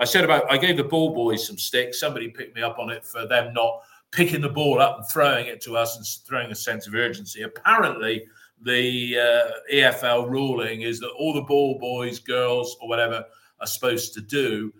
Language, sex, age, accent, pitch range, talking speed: English, male, 40-59, British, 110-130 Hz, 210 wpm